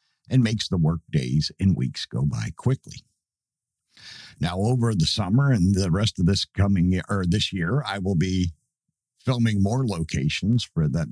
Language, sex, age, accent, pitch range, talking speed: English, male, 50-69, American, 85-130 Hz, 165 wpm